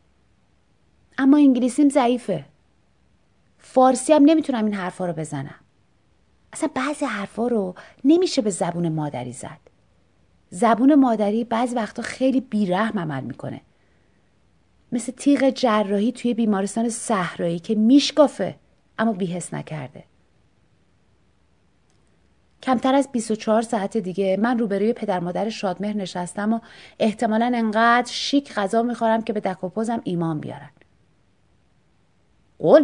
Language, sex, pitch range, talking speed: Persian, female, 180-250 Hz, 110 wpm